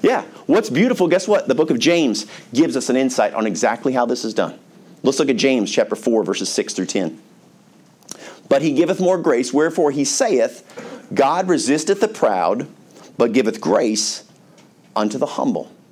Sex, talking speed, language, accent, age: male, 175 wpm, English, American, 40-59